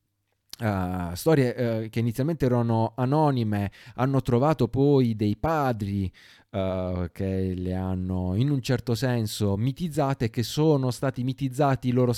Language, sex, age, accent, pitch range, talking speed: Italian, male, 30-49, native, 95-130 Hz, 115 wpm